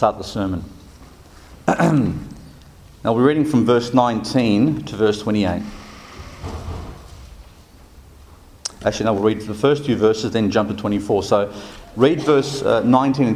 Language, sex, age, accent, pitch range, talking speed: English, male, 40-59, Australian, 105-140 Hz, 130 wpm